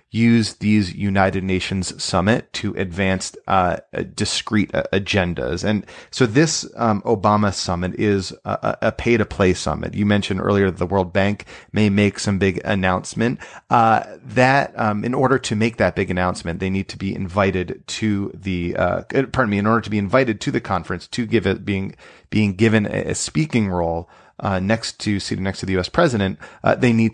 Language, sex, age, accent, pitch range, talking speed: English, male, 30-49, American, 90-110 Hz, 185 wpm